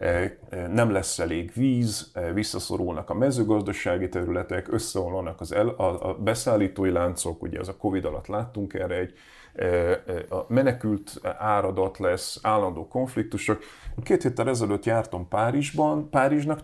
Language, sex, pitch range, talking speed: Hungarian, male, 95-120 Hz, 125 wpm